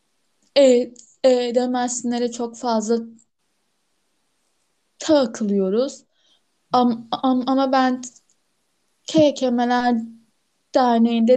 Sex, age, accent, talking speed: female, 10-29, native, 60 wpm